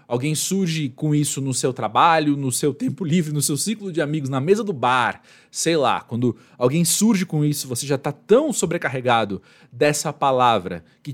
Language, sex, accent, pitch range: Portuguese, male, Brazilian, 125-170 Hz